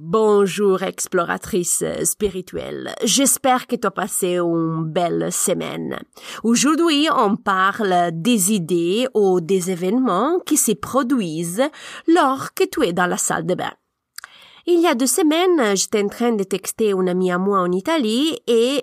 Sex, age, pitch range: female, 30-49, 180-255 Hz